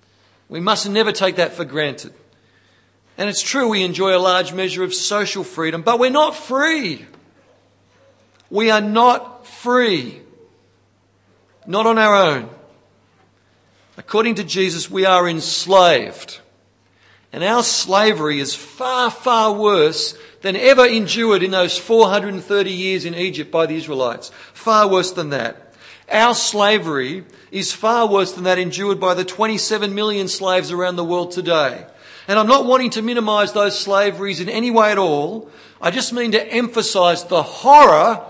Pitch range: 145-215 Hz